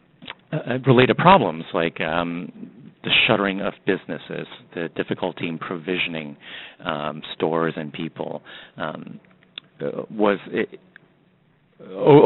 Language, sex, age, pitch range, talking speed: English, male, 40-59, 80-110 Hz, 100 wpm